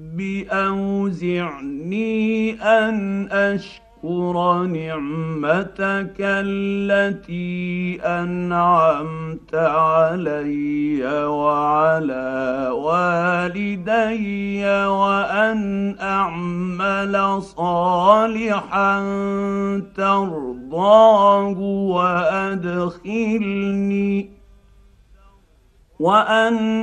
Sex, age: male, 50-69